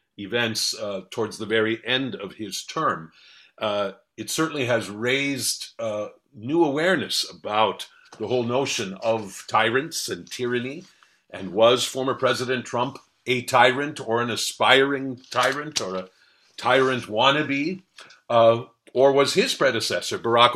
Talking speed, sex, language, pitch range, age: 135 wpm, male, English, 110-145 Hz, 50-69